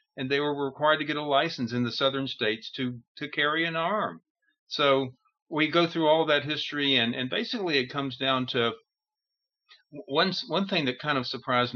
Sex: male